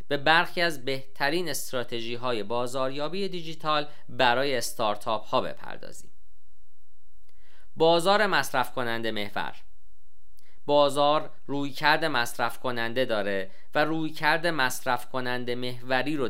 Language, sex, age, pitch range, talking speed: Persian, male, 40-59, 115-145 Hz, 100 wpm